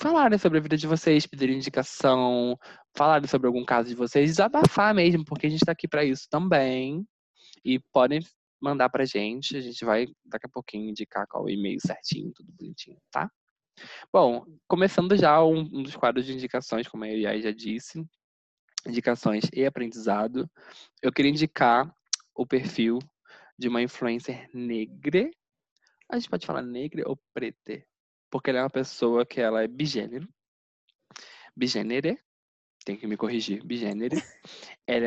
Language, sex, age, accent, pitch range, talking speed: Portuguese, male, 20-39, Brazilian, 110-140 Hz, 155 wpm